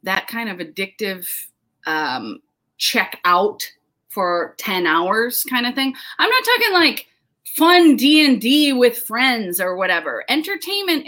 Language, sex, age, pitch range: English, female, 30-49, 195-290 Hz